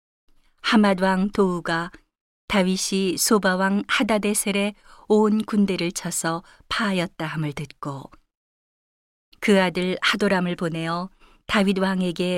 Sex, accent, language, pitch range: female, native, Korean, 170-200 Hz